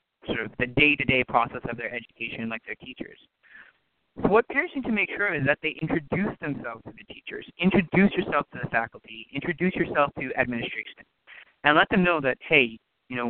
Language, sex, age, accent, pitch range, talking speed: English, male, 30-49, American, 130-170 Hz, 195 wpm